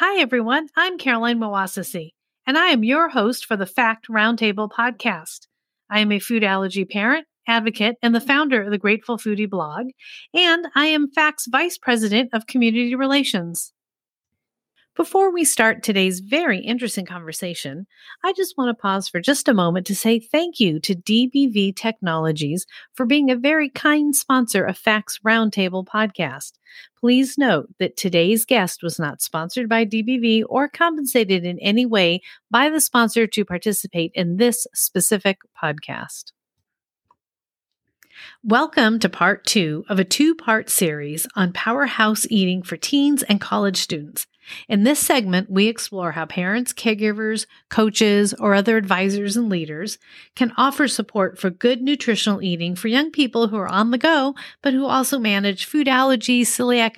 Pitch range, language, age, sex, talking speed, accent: 195-260 Hz, English, 40-59, female, 155 wpm, American